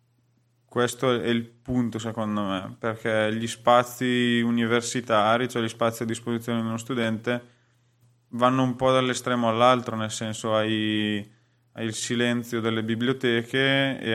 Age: 20-39